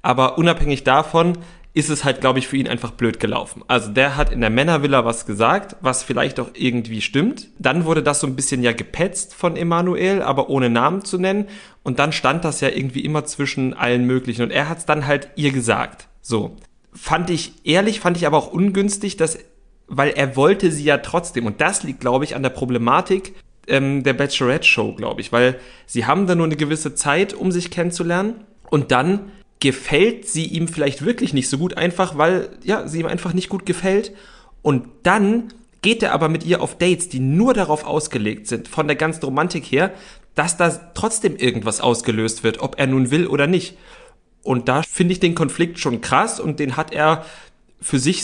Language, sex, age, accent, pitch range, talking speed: German, male, 30-49, German, 130-180 Hz, 205 wpm